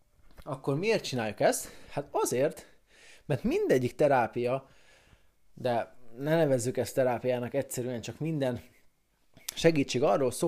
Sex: male